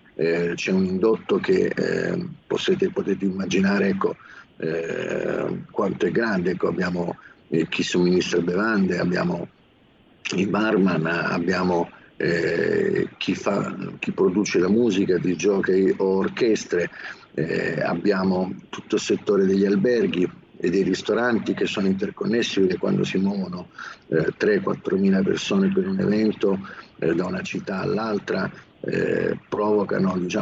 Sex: male